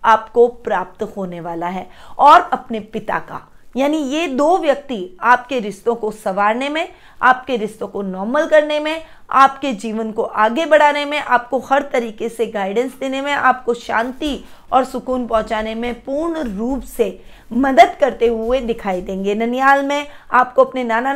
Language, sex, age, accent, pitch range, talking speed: Hindi, female, 20-39, native, 220-280 Hz, 160 wpm